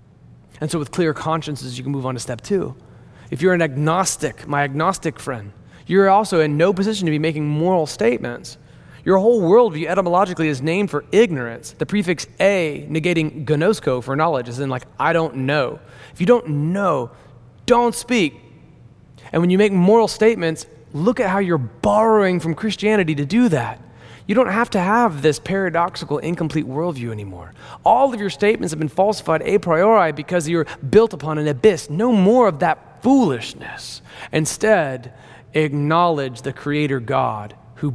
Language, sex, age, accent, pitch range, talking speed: English, male, 30-49, American, 130-180 Hz, 170 wpm